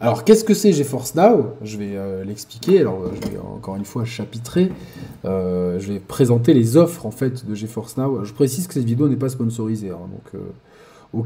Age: 20-39